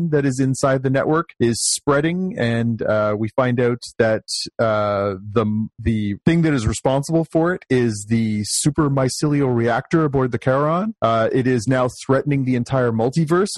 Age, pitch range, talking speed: 30-49, 115-145 Hz, 170 wpm